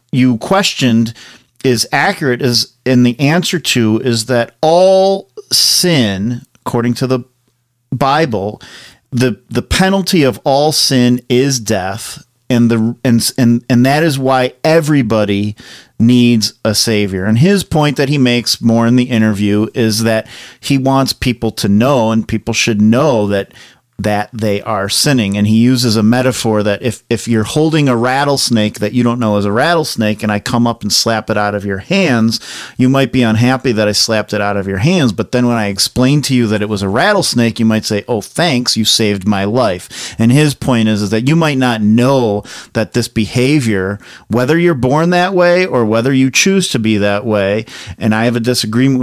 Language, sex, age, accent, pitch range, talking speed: English, male, 40-59, American, 110-135 Hz, 190 wpm